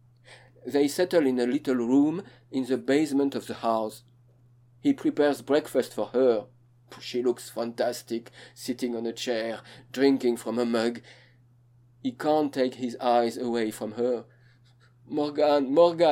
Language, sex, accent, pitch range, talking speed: English, male, French, 120-135 Hz, 140 wpm